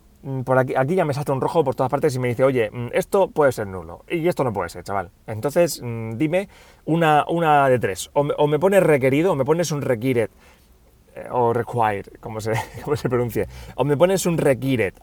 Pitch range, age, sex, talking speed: 115-150 Hz, 30-49, male, 215 wpm